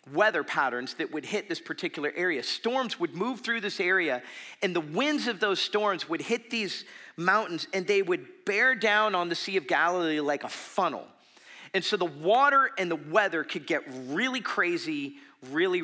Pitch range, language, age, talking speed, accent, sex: 145-230 Hz, English, 40-59, 185 wpm, American, male